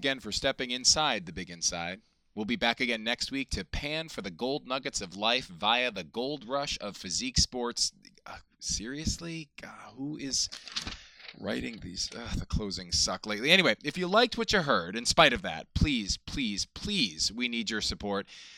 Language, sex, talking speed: English, male, 185 wpm